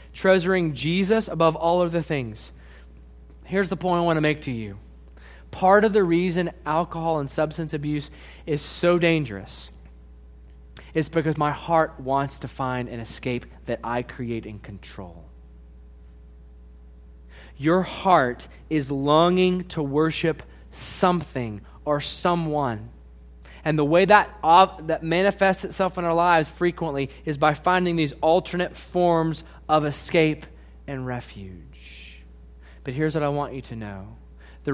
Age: 20-39